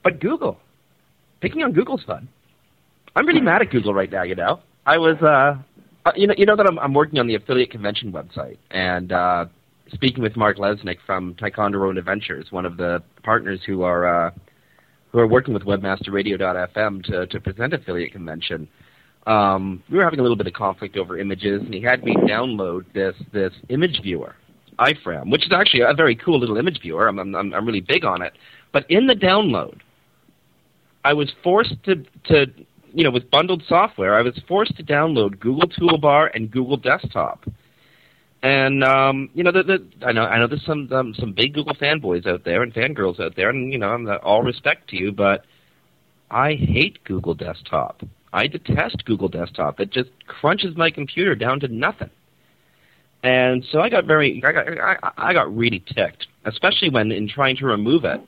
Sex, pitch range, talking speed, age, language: male, 100-145 Hz, 190 wpm, 40-59, English